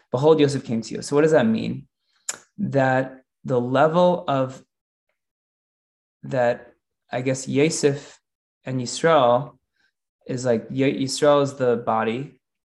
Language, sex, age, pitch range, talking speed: English, male, 20-39, 120-145 Hz, 125 wpm